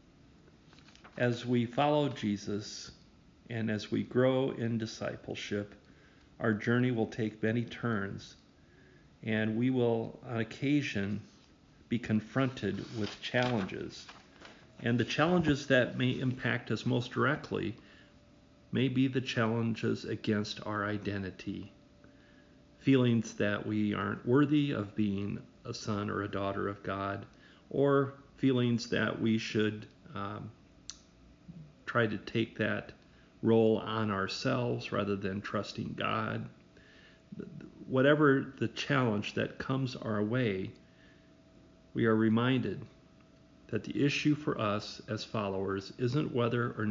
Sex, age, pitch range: male, 50-69, 105-125 Hz